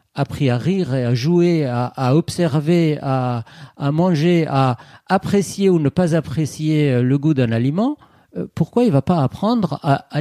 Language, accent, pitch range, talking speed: French, French, 140-210 Hz, 175 wpm